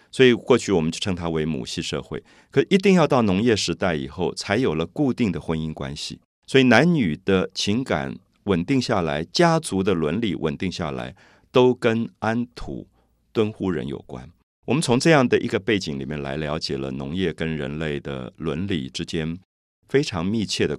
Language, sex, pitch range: Chinese, male, 75-105 Hz